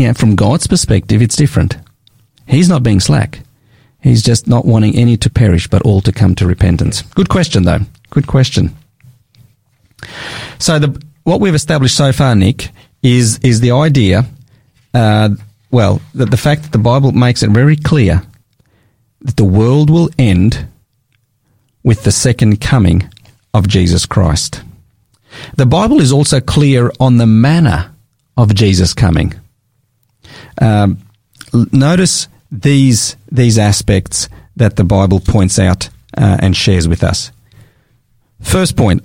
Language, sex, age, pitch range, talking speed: English, male, 40-59, 105-130 Hz, 140 wpm